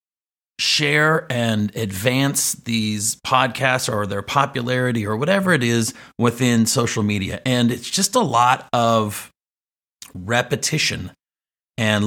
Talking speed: 115 wpm